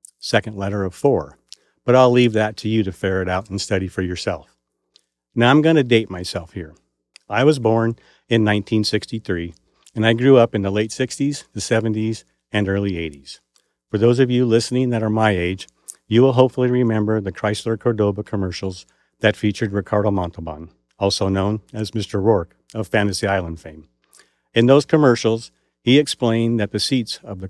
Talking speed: 175 wpm